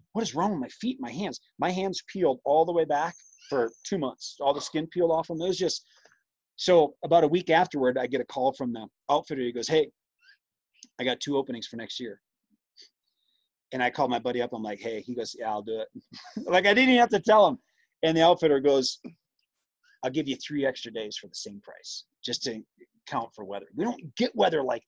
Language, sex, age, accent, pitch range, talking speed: English, male, 30-49, American, 120-165 Hz, 230 wpm